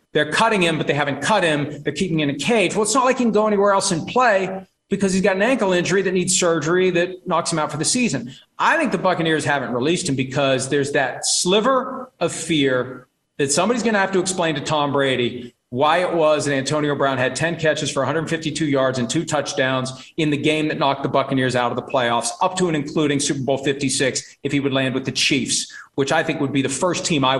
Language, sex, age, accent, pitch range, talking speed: English, male, 40-59, American, 140-195 Hz, 245 wpm